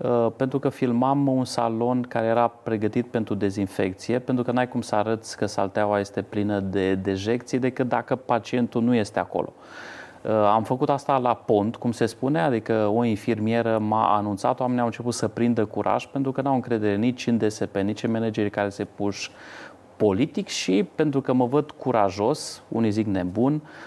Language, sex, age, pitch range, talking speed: Romanian, male, 30-49, 105-135 Hz, 175 wpm